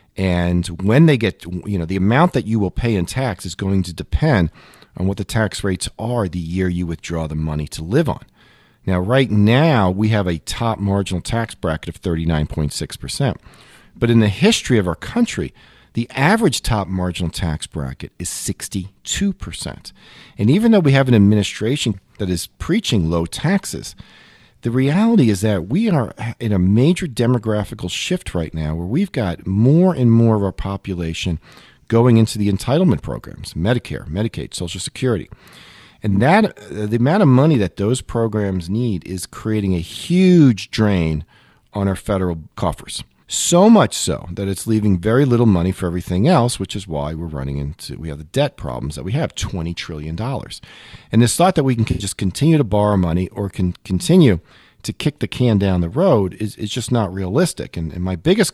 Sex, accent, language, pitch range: male, American, English, 90-120 Hz